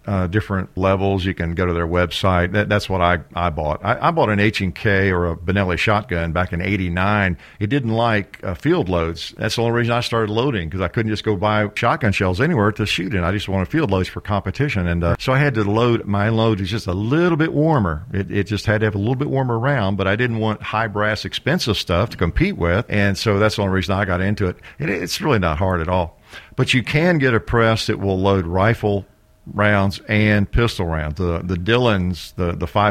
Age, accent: 50-69, American